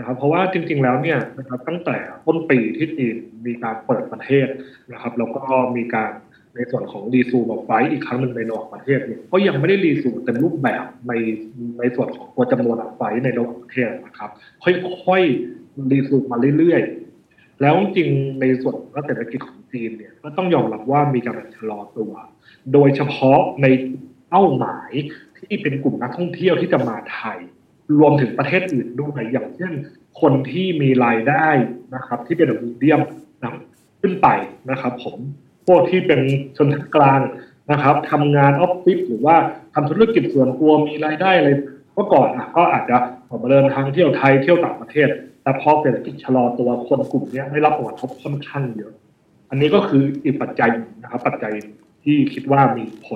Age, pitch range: 20-39, 125-150 Hz